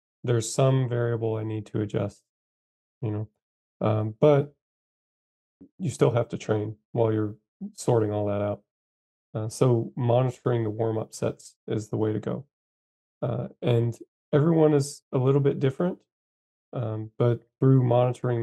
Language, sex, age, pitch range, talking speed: Arabic, male, 20-39, 105-120 Hz, 145 wpm